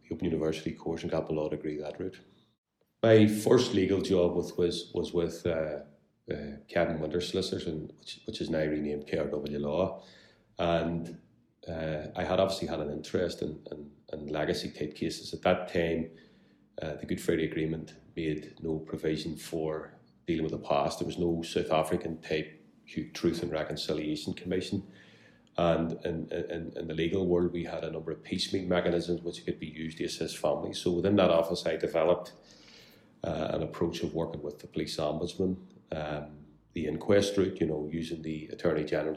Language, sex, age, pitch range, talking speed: English, male, 30-49, 75-85 Hz, 180 wpm